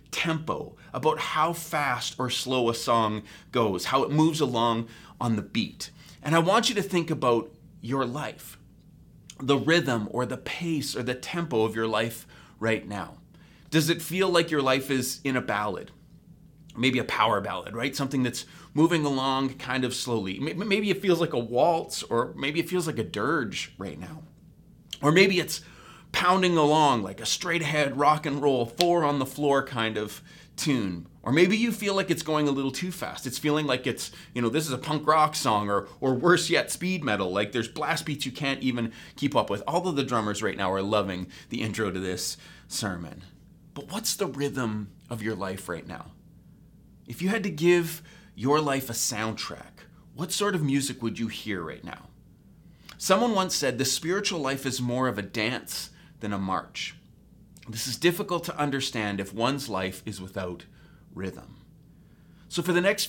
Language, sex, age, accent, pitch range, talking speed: English, male, 30-49, American, 115-165 Hz, 185 wpm